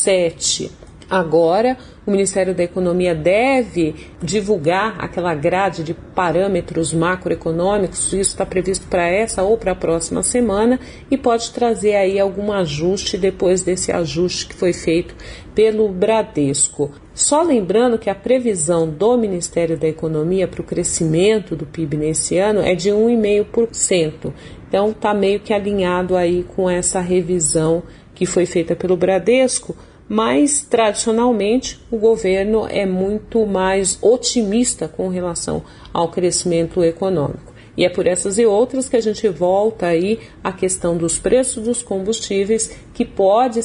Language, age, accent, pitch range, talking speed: Portuguese, 50-69, Brazilian, 175-220 Hz, 140 wpm